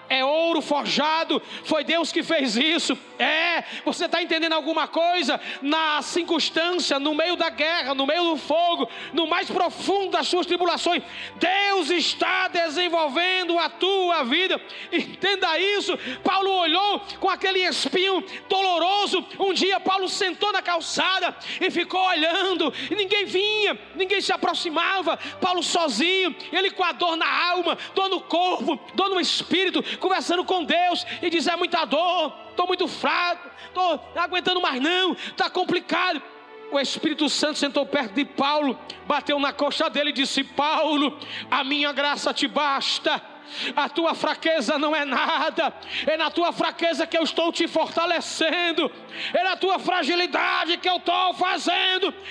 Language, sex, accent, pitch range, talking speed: Portuguese, male, Brazilian, 310-370 Hz, 150 wpm